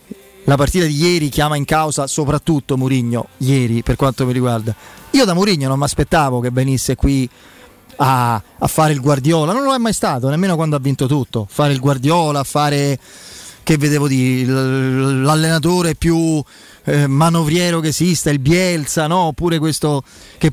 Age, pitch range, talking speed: 30-49, 140-175 Hz, 165 wpm